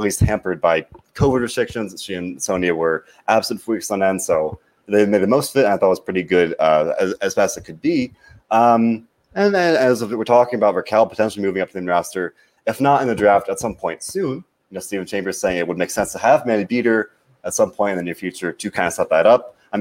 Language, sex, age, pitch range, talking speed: English, male, 30-49, 95-120 Hz, 260 wpm